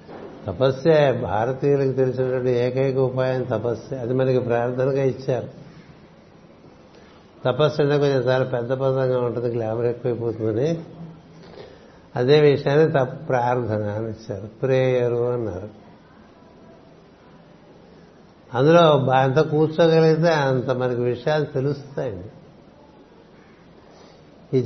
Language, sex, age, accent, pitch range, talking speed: Telugu, male, 60-79, native, 125-155 Hz, 85 wpm